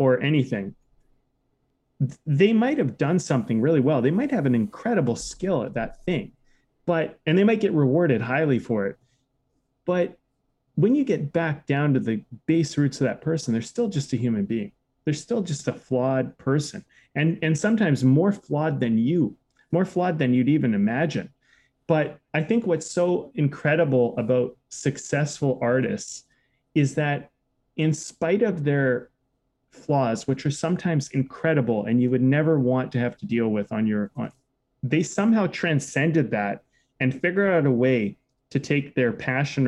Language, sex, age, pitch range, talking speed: English, male, 30-49, 125-155 Hz, 165 wpm